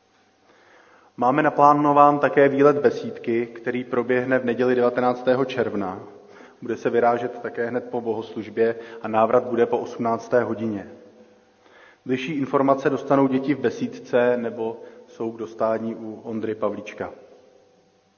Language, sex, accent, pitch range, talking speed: Czech, male, native, 115-130 Hz, 120 wpm